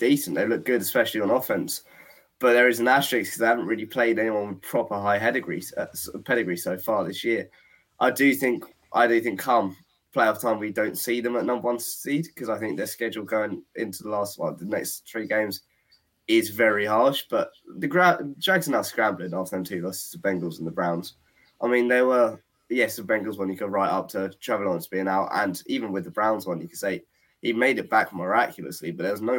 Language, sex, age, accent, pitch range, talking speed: English, male, 20-39, British, 100-125 Hz, 230 wpm